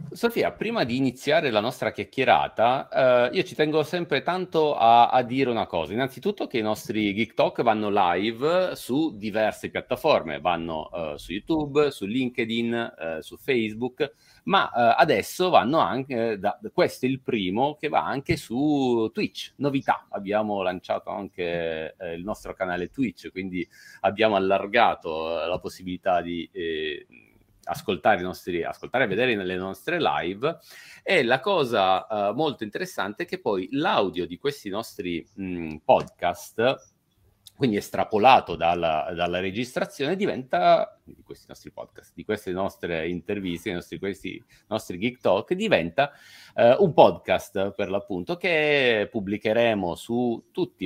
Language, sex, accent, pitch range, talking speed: Italian, male, native, 95-135 Hz, 145 wpm